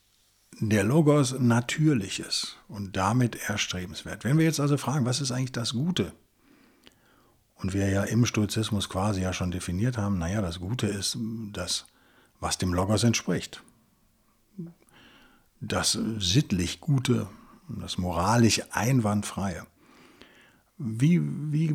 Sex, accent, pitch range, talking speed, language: male, German, 100-135 Hz, 120 wpm, German